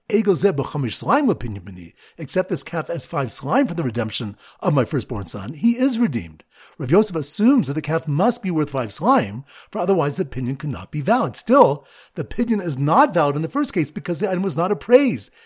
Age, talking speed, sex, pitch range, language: 40-59, 200 wpm, male, 140-210 Hz, English